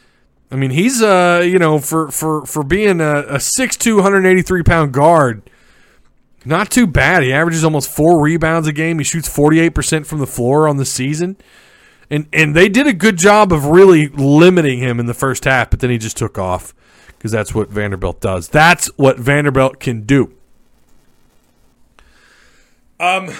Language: English